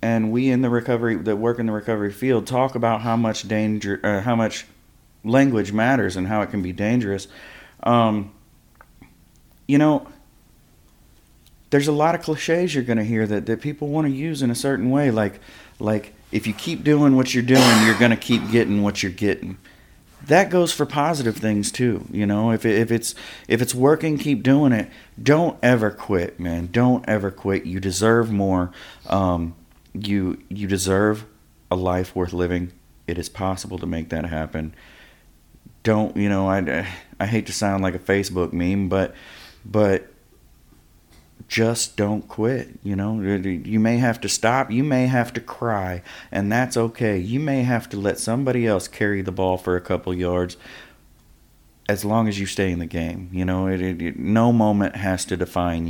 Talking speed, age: 185 wpm, 30-49